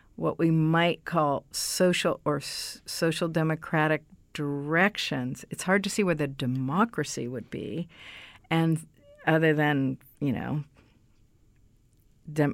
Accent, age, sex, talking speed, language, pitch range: American, 50-69, female, 120 wpm, English, 145-180 Hz